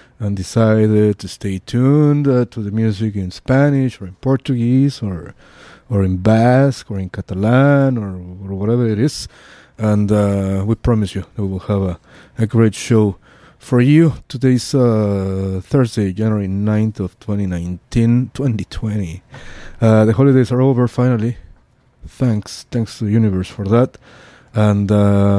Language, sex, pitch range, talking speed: English, male, 100-125 Hz, 155 wpm